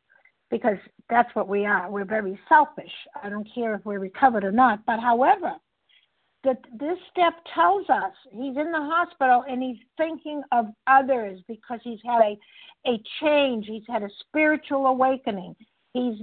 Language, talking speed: English, 165 wpm